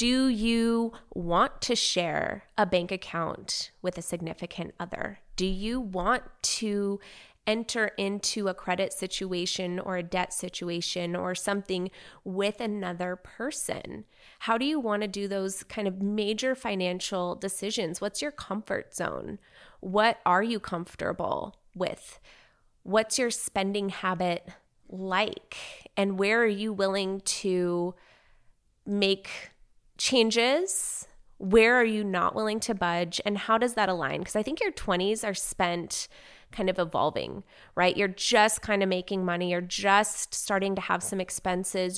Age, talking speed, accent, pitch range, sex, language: 20-39, 145 wpm, American, 185-225 Hz, female, English